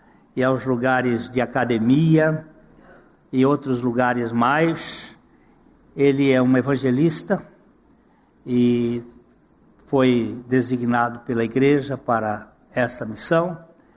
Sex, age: male, 60-79